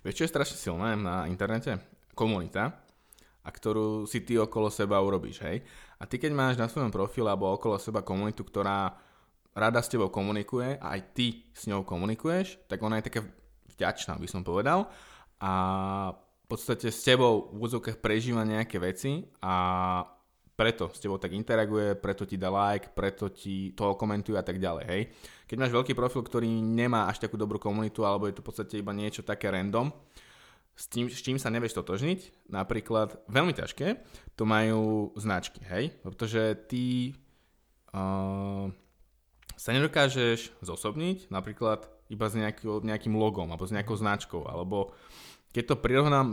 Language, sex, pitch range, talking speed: Slovak, male, 100-120 Hz, 160 wpm